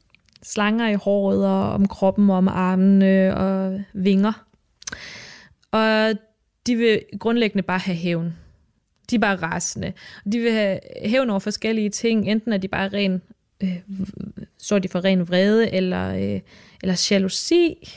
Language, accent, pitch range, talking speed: Danish, native, 190-220 Hz, 150 wpm